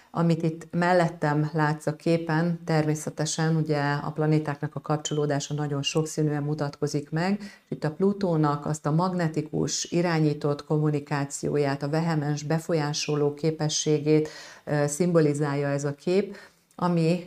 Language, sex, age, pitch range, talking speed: Hungarian, female, 40-59, 145-160 Hz, 120 wpm